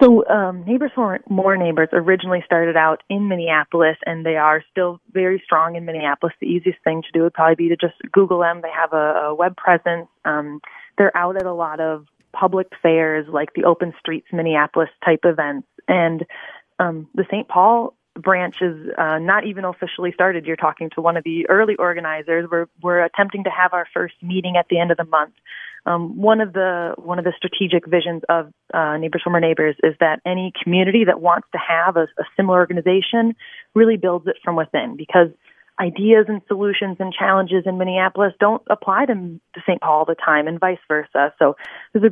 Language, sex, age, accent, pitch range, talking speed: English, female, 20-39, American, 165-195 Hz, 200 wpm